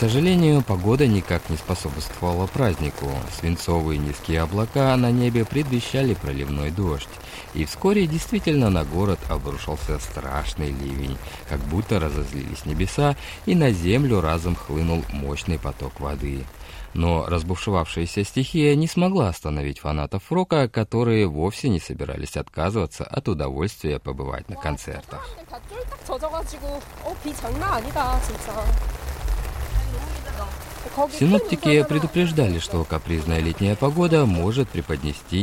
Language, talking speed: Russian, 105 wpm